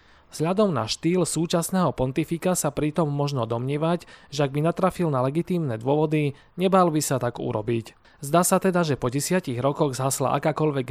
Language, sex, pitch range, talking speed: Slovak, male, 120-160 Hz, 165 wpm